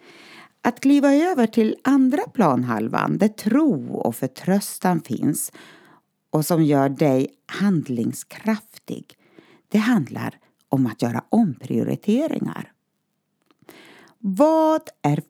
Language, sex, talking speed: Swedish, female, 100 wpm